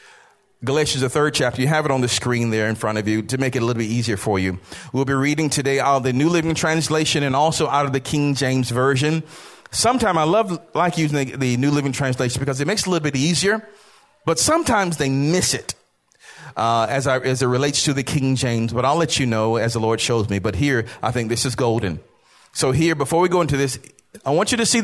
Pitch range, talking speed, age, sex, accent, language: 130-220 Hz, 250 wpm, 40-59, male, American, English